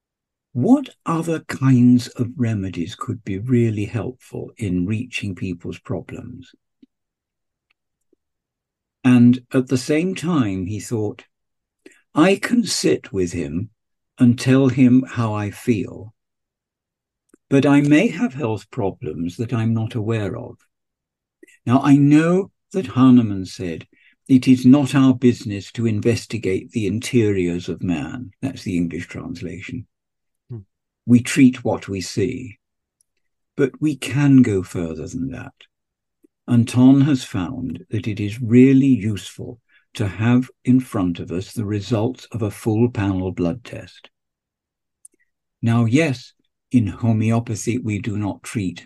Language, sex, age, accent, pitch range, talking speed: English, male, 60-79, British, 105-130 Hz, 130 wpm